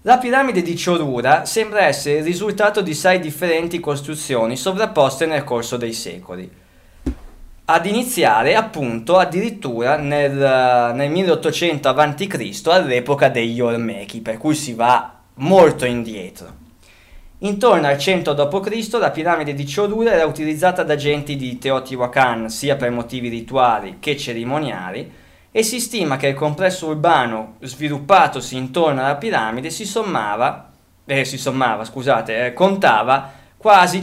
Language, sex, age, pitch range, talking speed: Italian, male, 20-39, 120-170 Hz, 130 wpm